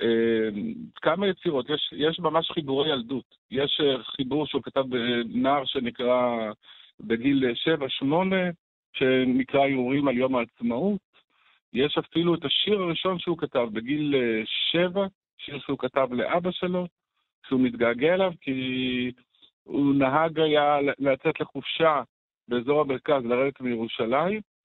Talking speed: 115 wpm